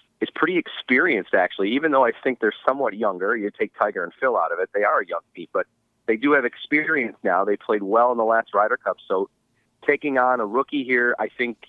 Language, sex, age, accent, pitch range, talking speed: English, male, 30-49, American, 110-130 Hz, 235 wpm